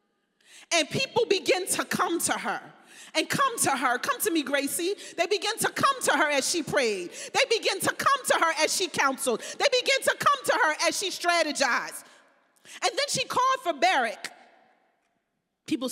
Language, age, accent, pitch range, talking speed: English, 30-49, American, 270-350 Hz, 185 wpm